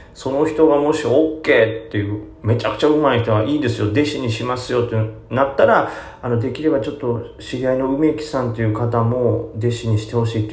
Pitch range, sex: 100-130 Hz, male